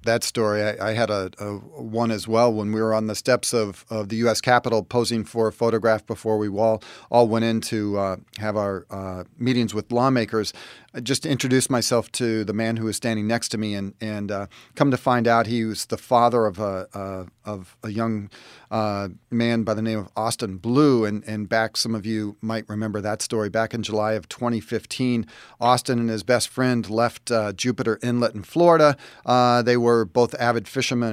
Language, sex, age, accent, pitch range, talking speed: English, male, 40-59, American, 105-120 Hz, 210 wpm